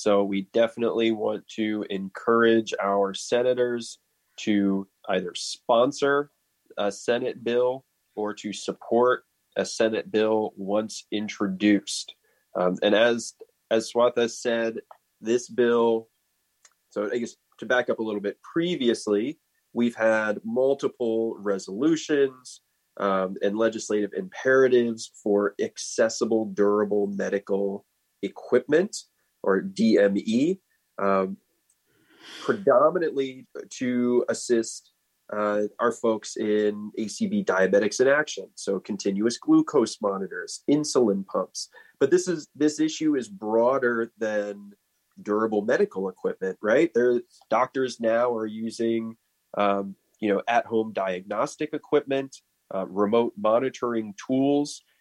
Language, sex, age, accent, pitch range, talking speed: English, male, 20-39, American, 105-125 Hz, 110 wpm